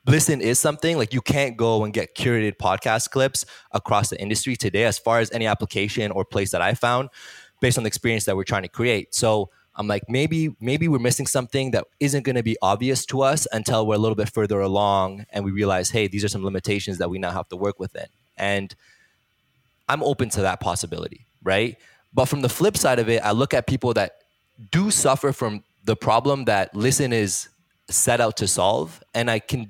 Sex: male